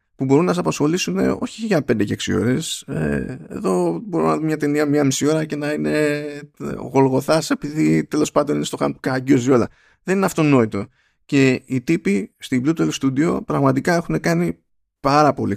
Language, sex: Greek, male